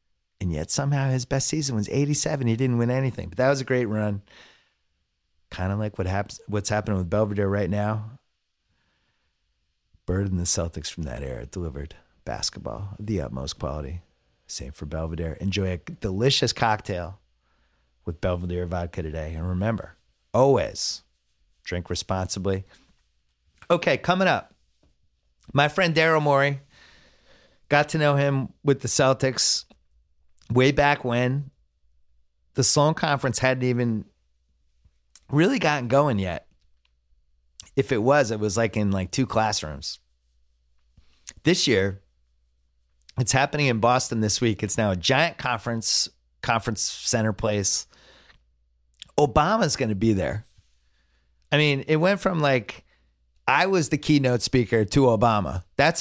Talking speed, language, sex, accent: 140 wpm, English, male, American